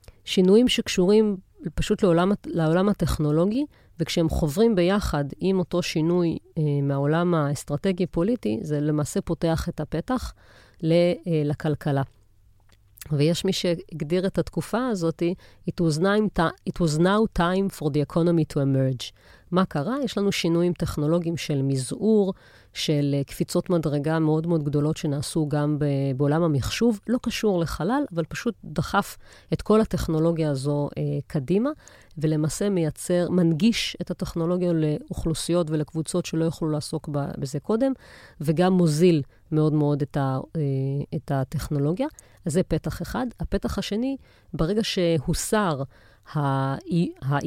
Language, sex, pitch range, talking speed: Hebrew, female, 145-180 Hz, 115 wpm